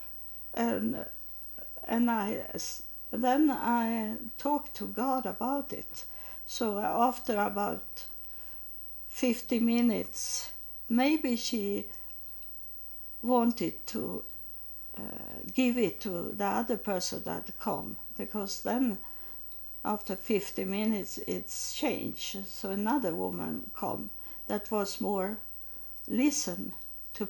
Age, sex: 60-79, female